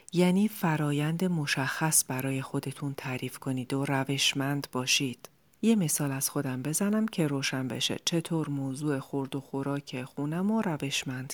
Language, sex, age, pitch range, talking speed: Persian, female, 40-59, 135-175 Hz, 140 wpm